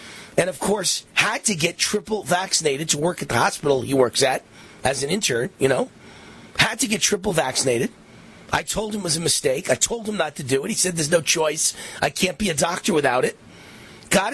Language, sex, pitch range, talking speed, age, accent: English, male, 145-205 Hz, 220 wpm, 30-49, American